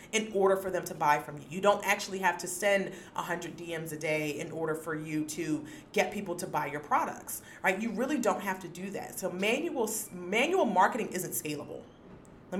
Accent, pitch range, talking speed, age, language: American, 165-200 Hz, 210 wpm, 30-49, English